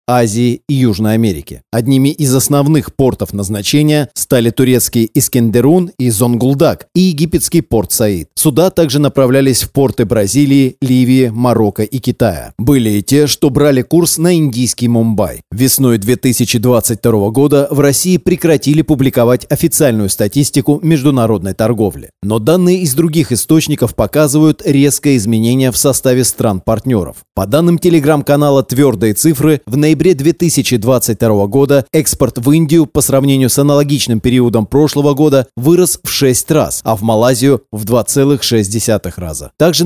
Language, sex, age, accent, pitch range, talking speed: Russian, male, 30-49, native, 115-145 Hz, 135 wpm